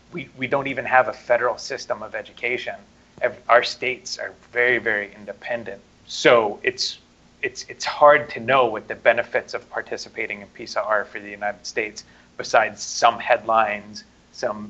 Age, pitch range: 30-49, 105-120 Hz